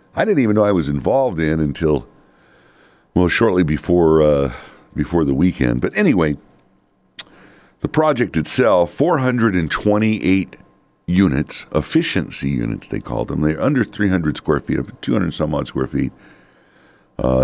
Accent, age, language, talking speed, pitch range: American, 60-79, English, 135 wpm, 70-95 Hz